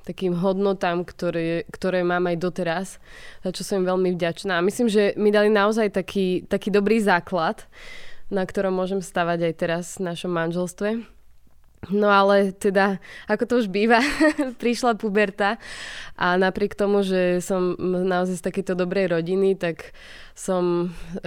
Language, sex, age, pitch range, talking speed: Slovak, female, 20-39, 175-200 Hz, 145 wpm